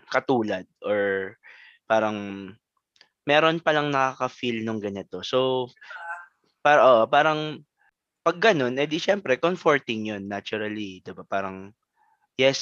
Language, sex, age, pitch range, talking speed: Filipino, male, 20-39, 105-140 Hz, 120 wpm